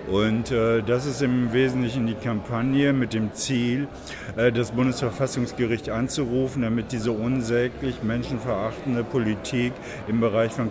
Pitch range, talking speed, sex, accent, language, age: 105-130 Hz, 130 wpm, male, German, German, 50-69